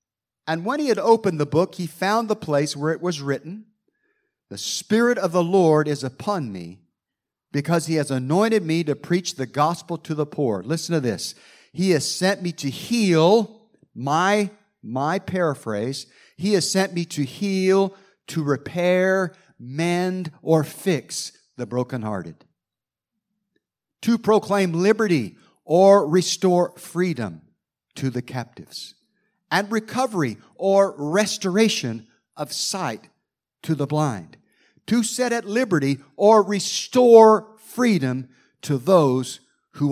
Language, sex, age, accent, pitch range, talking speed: English, male, 50-69, American, 130-195 Hz, 130 wpm